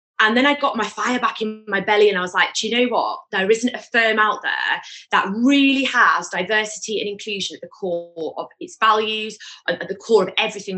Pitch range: 185-220 Hz